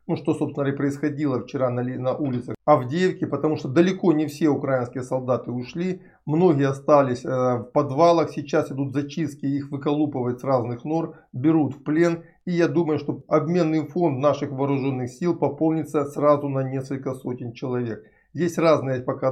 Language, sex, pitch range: Russian, male, 125-155 Hz